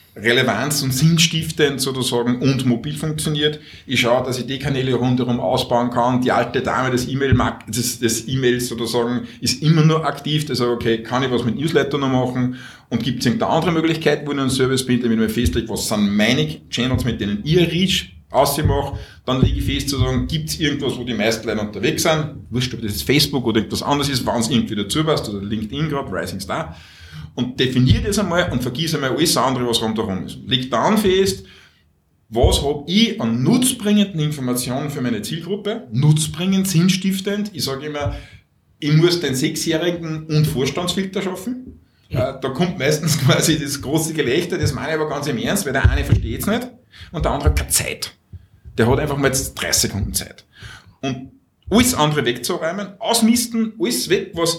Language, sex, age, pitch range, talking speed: German, male, 50-69, 120-160 Hz, 195 wpm